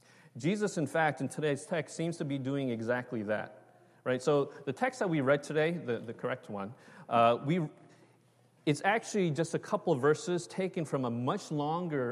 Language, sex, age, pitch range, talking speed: English, male, 30-49, 120-165 Hz, 190 wpm